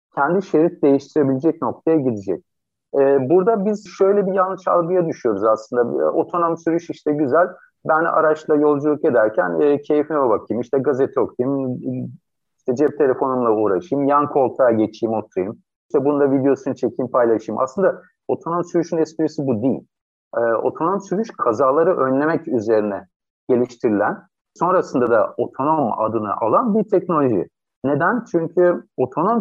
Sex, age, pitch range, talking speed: male, 50-69, 130-170 Hz, 130 wpm